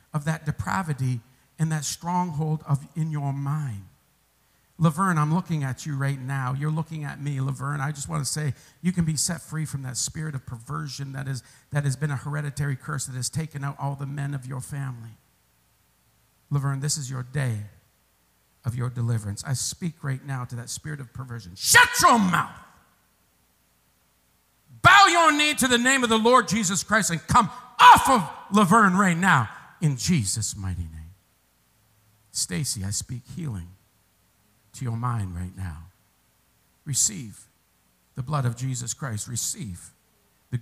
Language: English